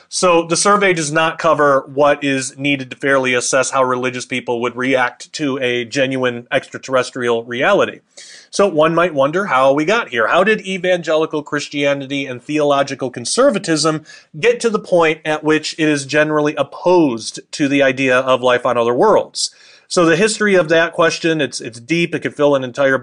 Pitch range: 130-160 Hz